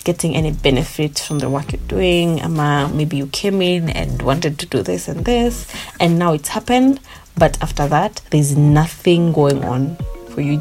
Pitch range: 130-180 Hz